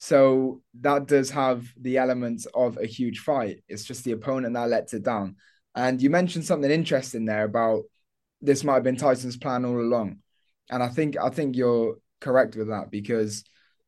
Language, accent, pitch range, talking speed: English, British, 120-145 Hz, 185 wpm